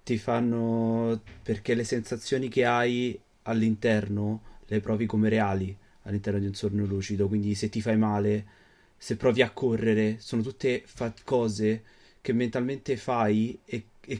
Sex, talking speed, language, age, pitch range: male, 150 wpm, Italian, 30-49, 105-120 Hz